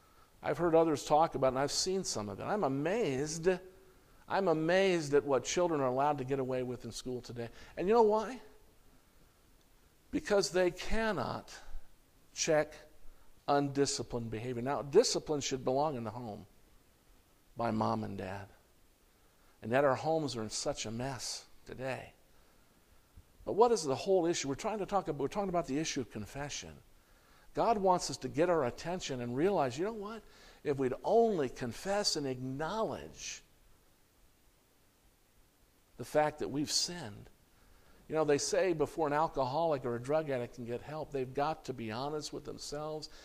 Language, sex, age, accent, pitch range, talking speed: English, male, 50-69, American, 120-165 Hz, 170 wpm